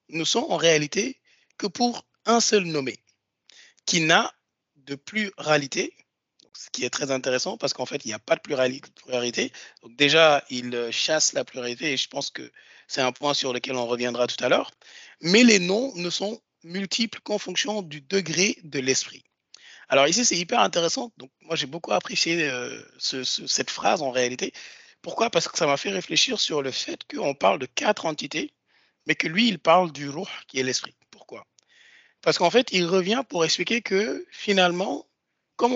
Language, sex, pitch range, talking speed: French, male, 140-200 Hz, 185 wpm